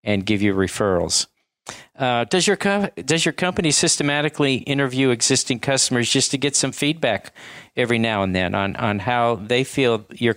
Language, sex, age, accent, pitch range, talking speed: English, male, 50-69, American, 110-145 Hz, 175 wpm